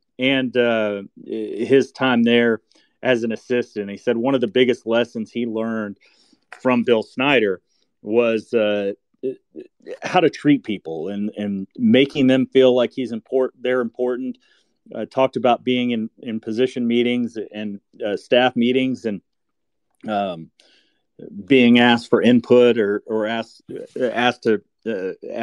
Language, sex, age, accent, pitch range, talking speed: English, male, 40-59, American, 110-125 Hz, 140 wpm